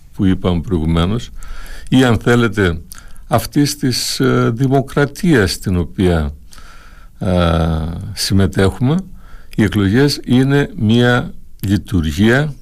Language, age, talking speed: Greek, 60-79, 80 wpm